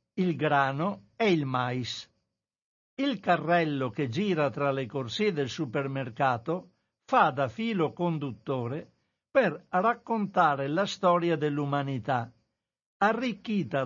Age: 60-79